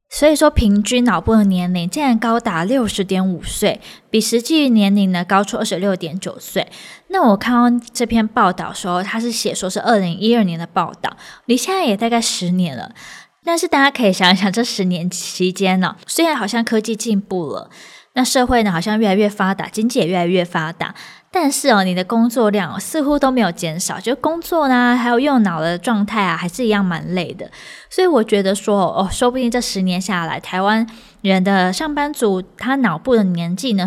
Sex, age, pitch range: female, 20-39, 185-240 Hz